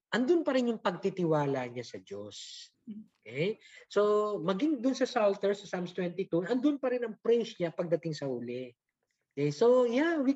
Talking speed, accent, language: 175 wpm, native, Filipino